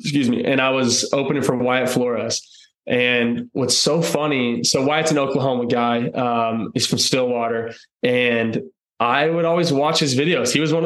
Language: English